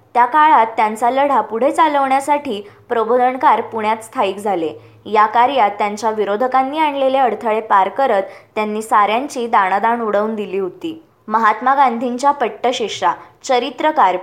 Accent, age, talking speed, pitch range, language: native, 20-39, 40 wpm, 210-275 Hz, Marathi